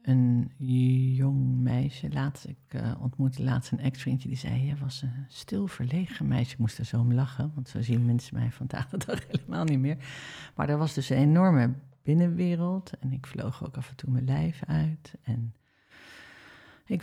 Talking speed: 185 wpm